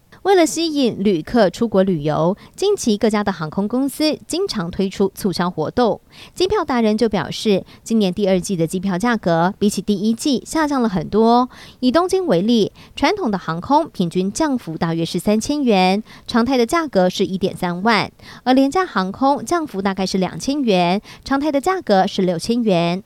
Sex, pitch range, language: male, 180-245 Hz, Chinese